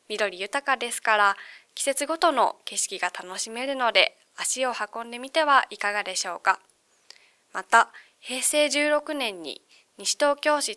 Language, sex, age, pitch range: Japanese, female, 20-39, 200-280 Hz